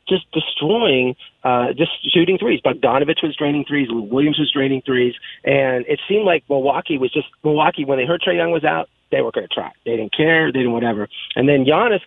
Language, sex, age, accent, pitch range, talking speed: English, male, 30-49, American, 125-160 Hz, 215 wpm